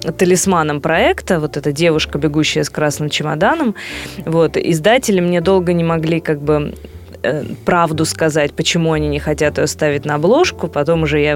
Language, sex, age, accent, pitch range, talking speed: Russian, female, 20-39, native, 155-190 Hz, 160 wpm